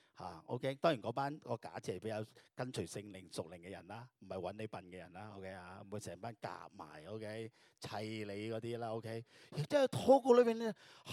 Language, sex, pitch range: Chinese, male, 115-175 Hz